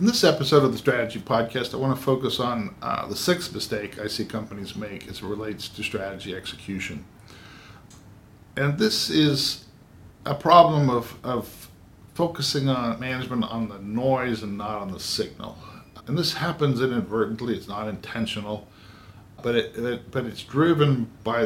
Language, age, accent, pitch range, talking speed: English, 50-69, American, 105-130 Hz, 155 wpm